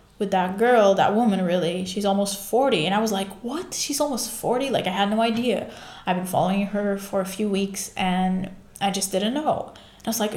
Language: English